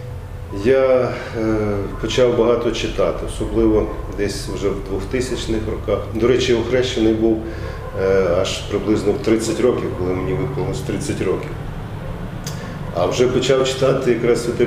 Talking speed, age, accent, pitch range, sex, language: 125 wpm, 40-59, native, 95-115 Hz, male, Ukrainian